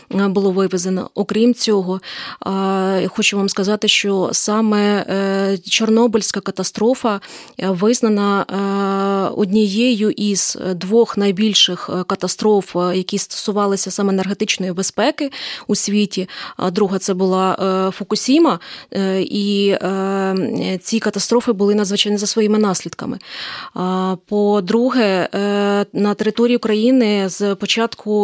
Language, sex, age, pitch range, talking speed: Ukrainian, female, 20-39, 195-220 Hz, 95 wpm